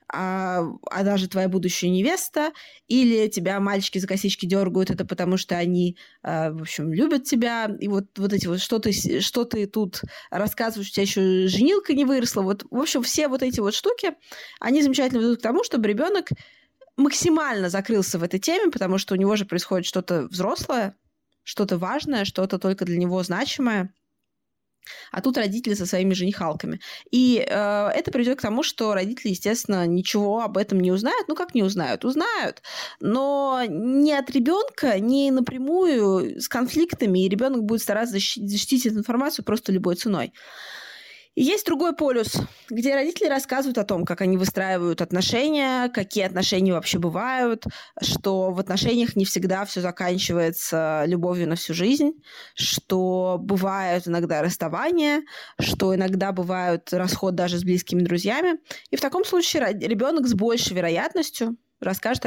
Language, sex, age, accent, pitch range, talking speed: Russian, female, 20-39, native, 185-255 Hz, 155 wpm